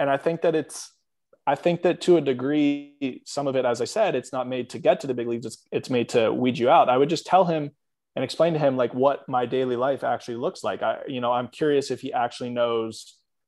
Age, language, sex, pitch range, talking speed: 20-39, English, male, 110-140 Hz, 265 wpm